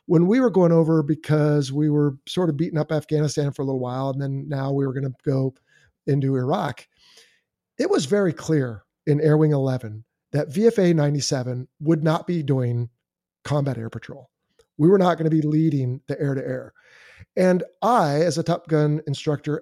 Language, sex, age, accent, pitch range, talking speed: English, male, 50-69, American, 145-175 Hz, 195 wpm